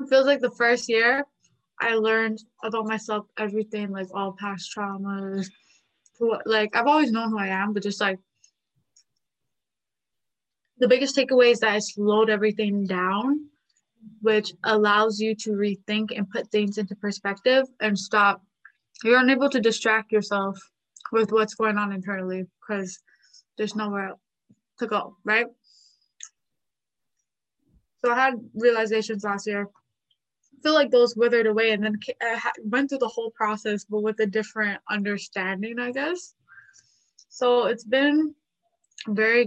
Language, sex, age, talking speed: English, female, 20-39, 135 wpm